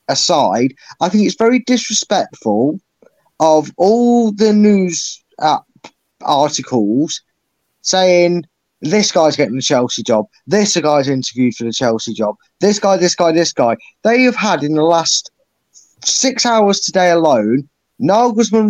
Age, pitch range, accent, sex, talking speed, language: 20-39, 145-210 Hz, British, male, 140 wpm, English